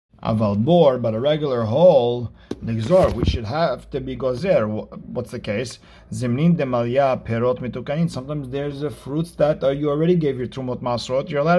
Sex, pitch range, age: male, 115-145 Hz, 50-69